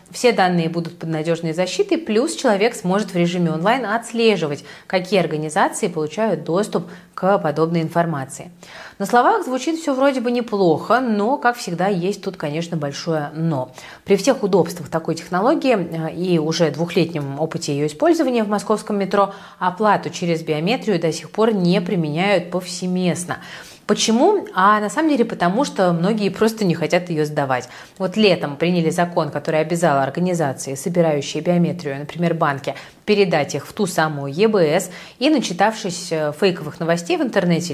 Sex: female